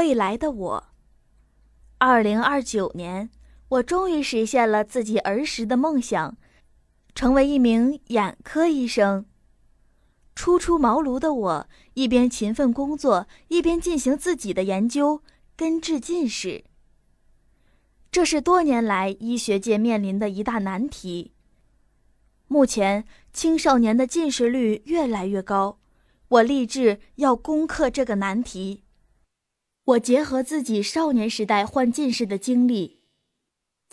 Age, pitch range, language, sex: 20-39, 210-280 Hz, Chinese, female